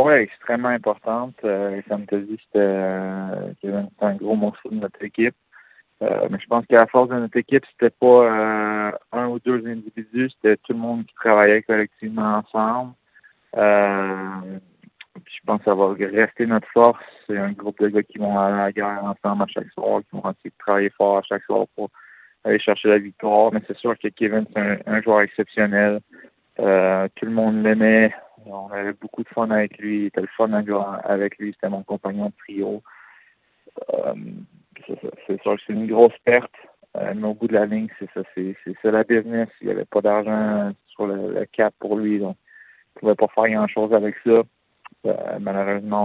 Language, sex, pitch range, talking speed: French, male, 100-115 Hz, 200 wpm